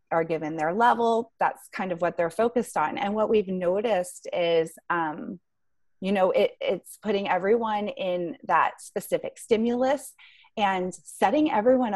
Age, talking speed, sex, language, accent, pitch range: 30-49, 145 wpm, female, English, American, 175-230 Hz